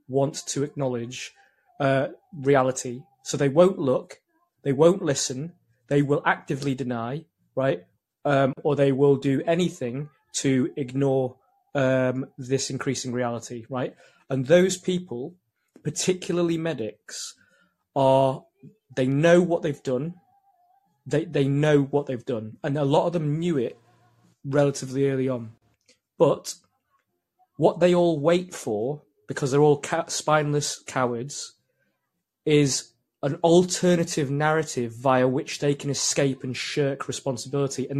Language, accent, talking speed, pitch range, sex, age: English, British, 130 wpm, 130-165 Hz, male, 20-39